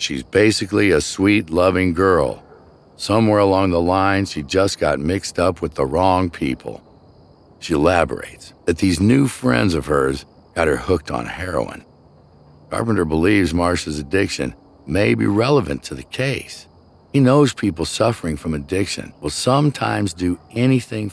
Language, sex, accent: English, male, American